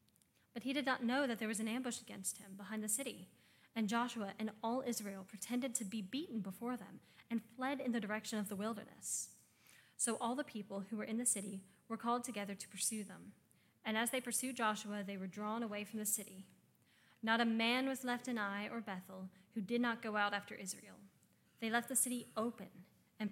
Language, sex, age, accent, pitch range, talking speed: English, female, 10-29, American, 200-240 Hz, 215 wpm